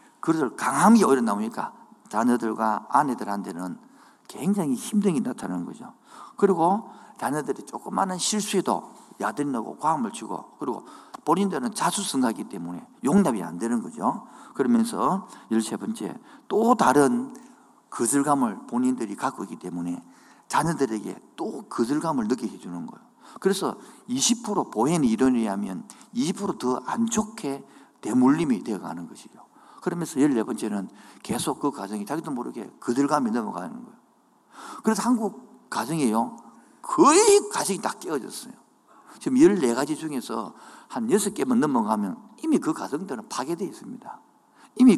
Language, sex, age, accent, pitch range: Korean, male, 50-69, native, 185-250 Hz